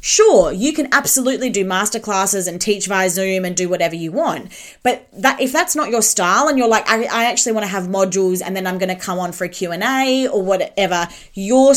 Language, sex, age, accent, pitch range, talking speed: English, female, 20-39, Australian, 190-275 Hz, 230 wpm